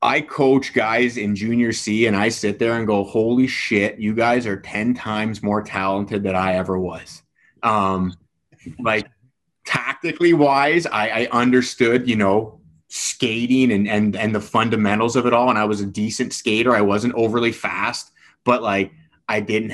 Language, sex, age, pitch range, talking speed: English, male, 30-49, 100-115 Hz, 175 wpm